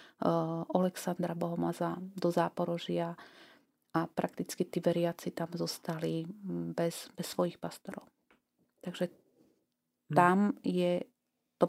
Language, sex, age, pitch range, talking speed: Slovak, female, 30-49, 170-190 Hz, 100 wpm